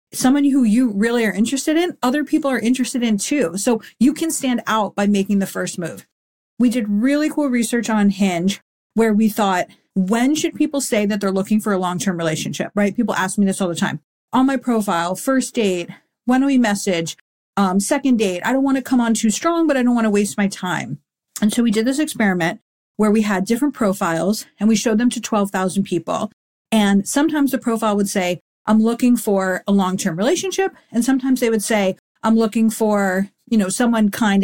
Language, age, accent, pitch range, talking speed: English, 40-59, American, 200-255 Hz, 215 wpm